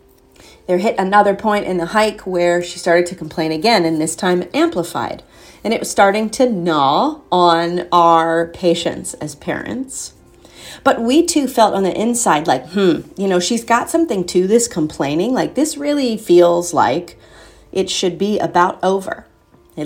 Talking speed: 170 wpm